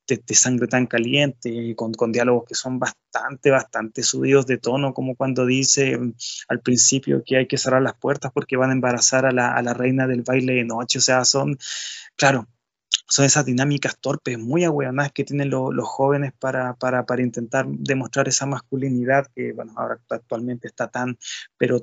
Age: 20-39